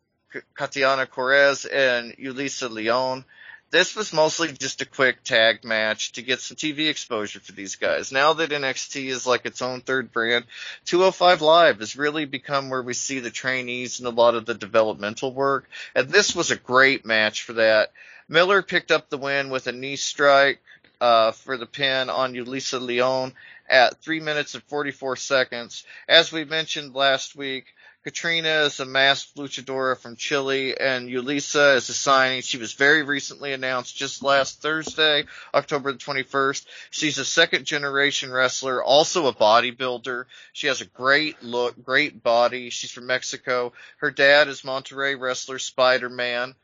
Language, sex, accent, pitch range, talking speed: English, male, American, 120-140 Hz, 165 wpm